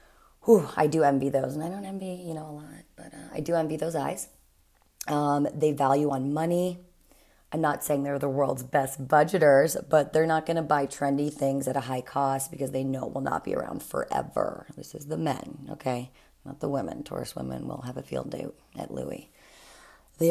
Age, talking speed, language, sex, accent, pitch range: 30-49, 210 wpm, English, female, American, 135-160 Hz